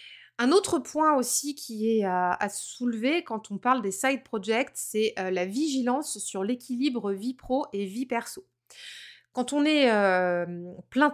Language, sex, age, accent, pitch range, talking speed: French, female, 20-39, French, 195-260 Hz, 165 wpm